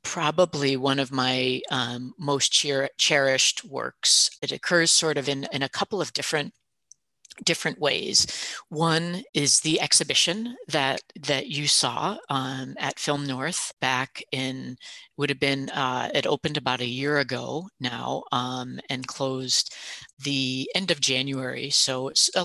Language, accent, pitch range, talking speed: English, American, 135-160 Hz, 150 wpm